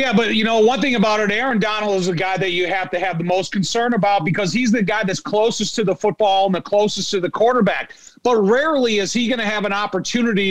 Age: 40-59